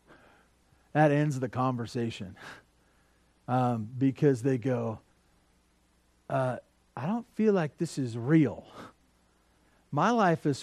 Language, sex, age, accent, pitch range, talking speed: English, male, 40-59, American, 115-180 Hz, 105 wpm